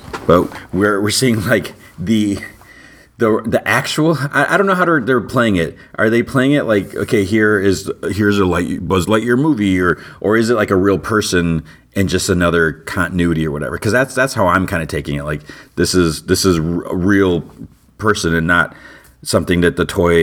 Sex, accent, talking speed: male, American, 210 wpm